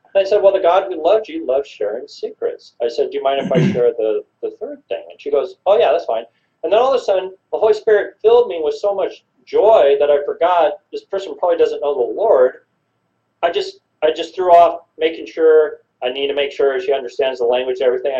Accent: American